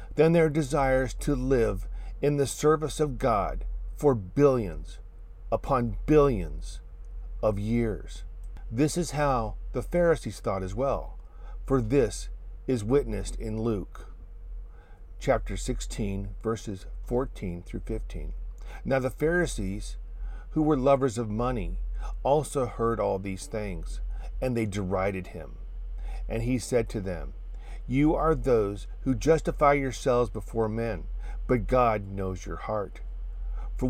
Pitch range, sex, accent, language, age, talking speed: 95-135 Hz, male, American, English, 50-69, 125 wpm